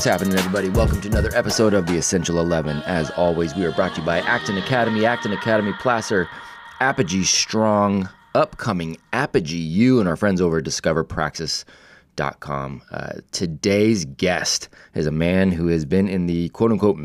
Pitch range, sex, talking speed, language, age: 75-95 Hz, male, 165 wpm, English, 20-39